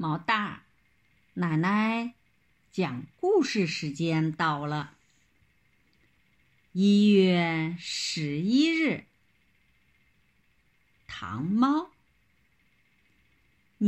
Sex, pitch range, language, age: female, 170-270 Hz, Chinese, 50-69